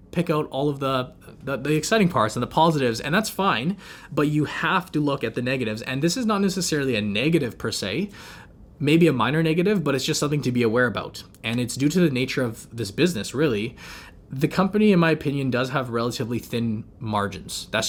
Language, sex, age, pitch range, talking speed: English, male, 20-39, 115-150 Hz, 220 wpm